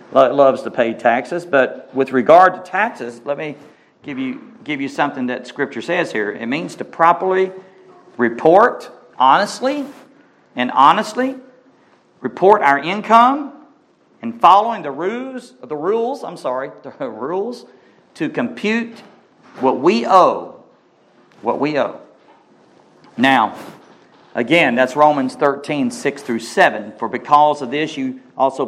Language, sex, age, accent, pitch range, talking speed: English, male, 50-69, American, 130-170 Hz, 130 wpm